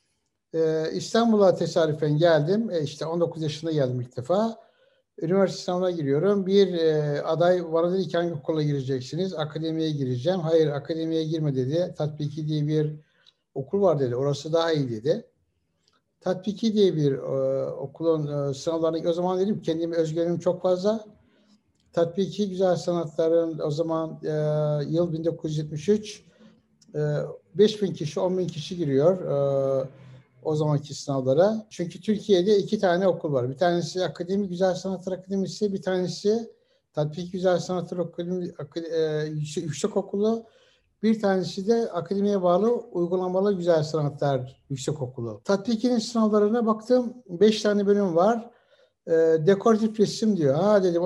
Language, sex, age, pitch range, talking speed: Turkish, male, 60-79, 155-195 Hz, 135 wpm